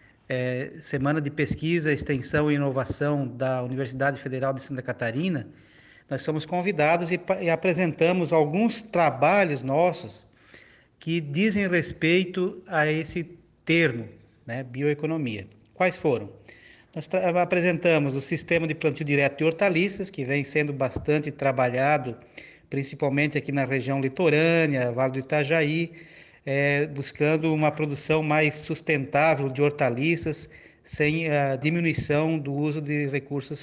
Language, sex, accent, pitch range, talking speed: Portuguese, male, Brazilian, 135-160 Hz, 125 wpm